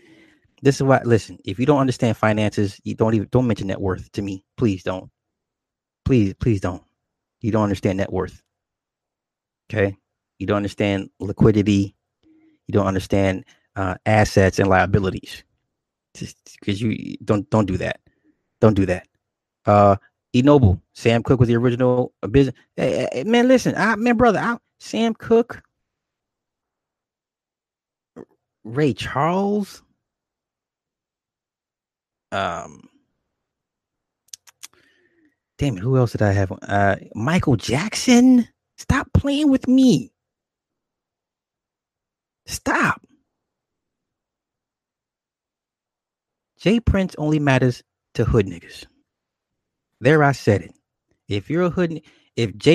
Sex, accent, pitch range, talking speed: male, American, 100-150 Hz, 120 wpm